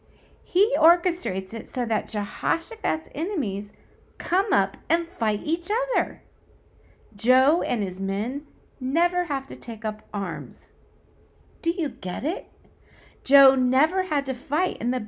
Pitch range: 215-310 Hz